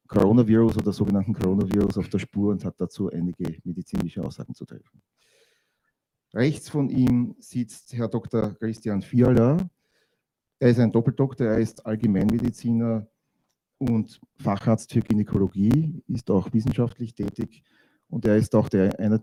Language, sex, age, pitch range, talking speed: German, male, 40-59, 95-115 Hz, 135 wpm